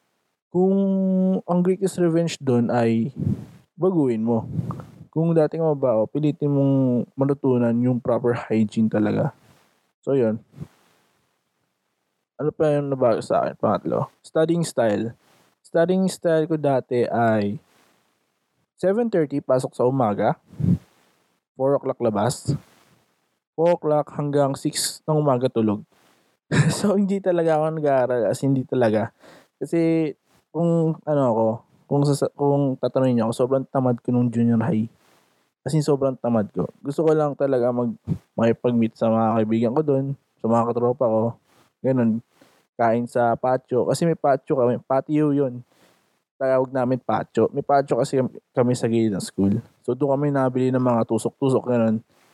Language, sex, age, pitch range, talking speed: Filipino, male, 20-39, 115-150 Hz, 140 wpm